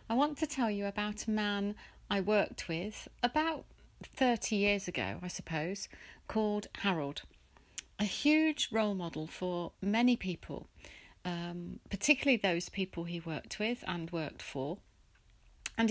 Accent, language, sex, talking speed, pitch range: British, English, female, 140 wpm, 170-225 Hz